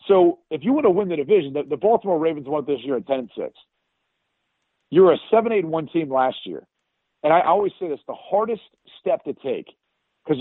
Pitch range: 140-165 Hz